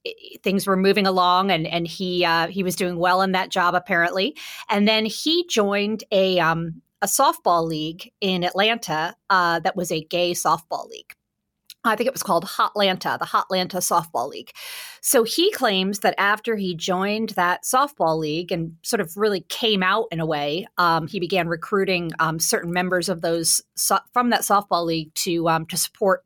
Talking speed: 185 wpm